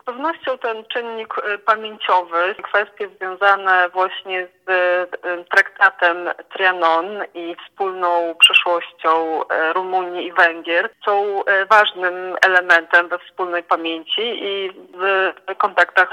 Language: Polish